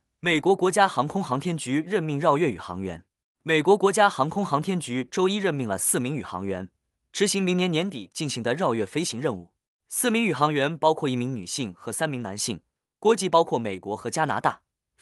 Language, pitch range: Chinese, 120-185 Hz